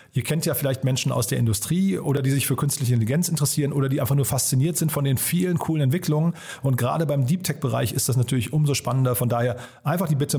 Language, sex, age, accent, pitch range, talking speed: German, male, 40-59, German, 130-160 Hz, 230 wpm